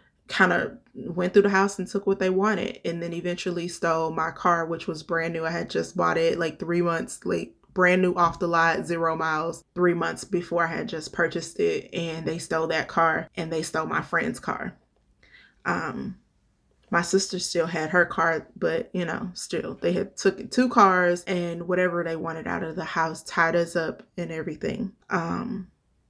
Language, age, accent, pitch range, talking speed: English, 20-39, American, 165-185 Hz, 200 wpm